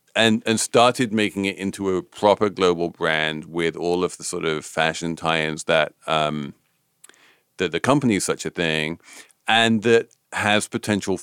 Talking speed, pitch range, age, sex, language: 165 wpm, 85-105 Hz, 40-59, male, English